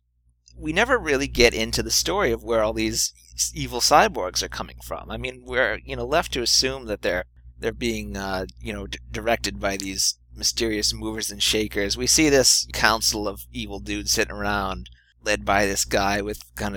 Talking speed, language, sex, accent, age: 195 wpm, English, male, American, 30-49